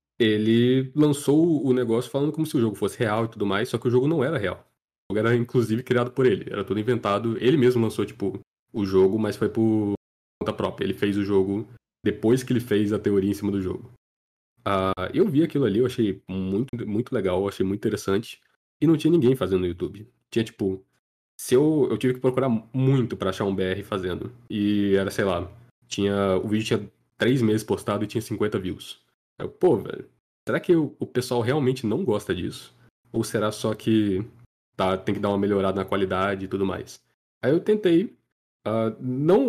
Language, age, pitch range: Portuguese, 20-39, 100-125 Hz